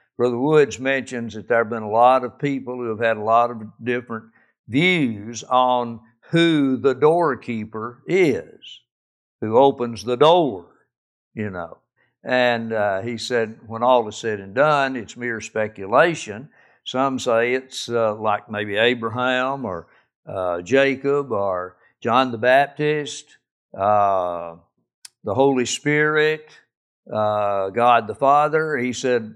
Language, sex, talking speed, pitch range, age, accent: English, male, 135 wpm, 110-135 Hz, 60-79, American